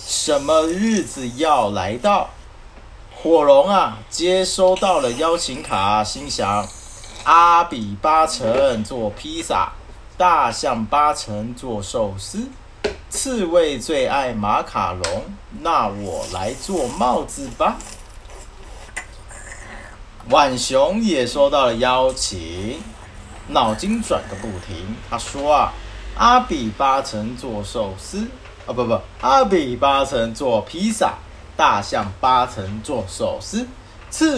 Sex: male